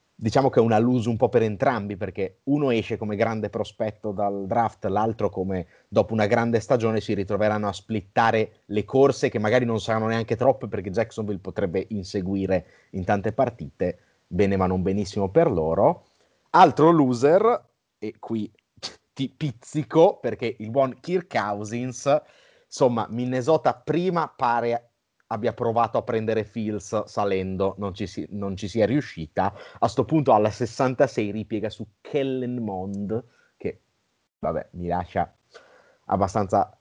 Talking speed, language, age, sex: 145 wpm, Italian, 30-49, male